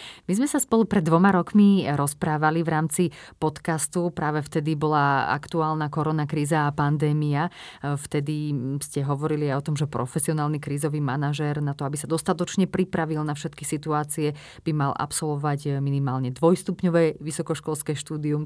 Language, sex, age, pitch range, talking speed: Slovak, female, 30-49, 150-170 Hz, 145 wpm